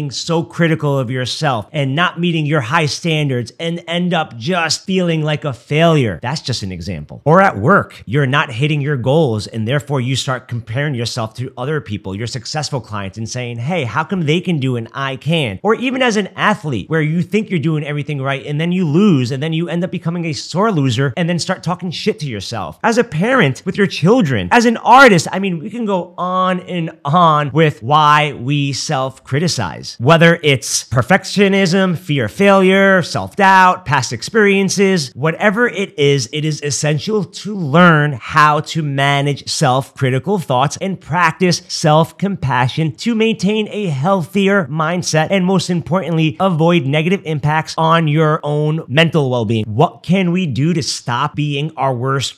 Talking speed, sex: 180 wpm, male